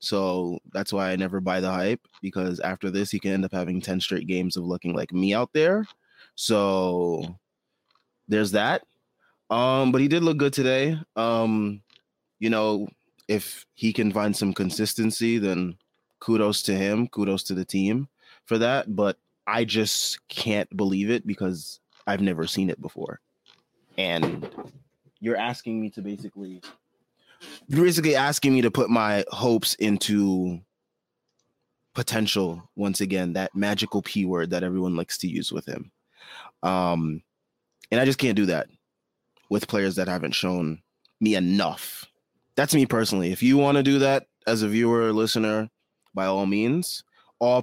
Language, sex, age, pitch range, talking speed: English, male, 20-39, 95-115 Hz, 160 wpm